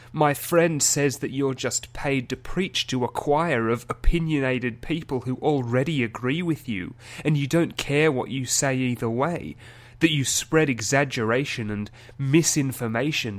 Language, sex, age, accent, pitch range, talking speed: English, male, 30-49, British, 115-140 Hz, 155 wpm